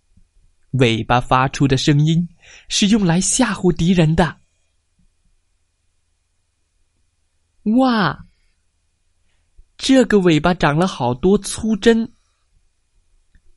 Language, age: Chinese, 20-39